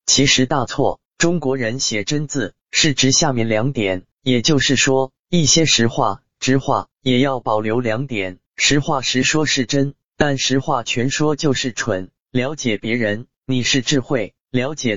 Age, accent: 20-39, native